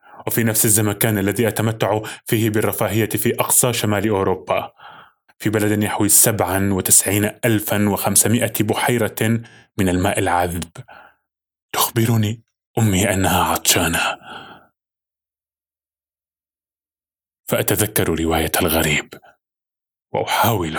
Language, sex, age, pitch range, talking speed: Arabic, male, 20-39, 95-115 Hz, 85 wpm